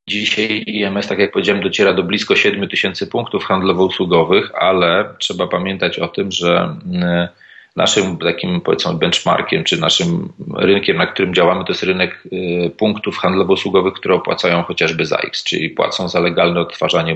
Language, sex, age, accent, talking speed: Polish, male, 40-59, native, 155 wpm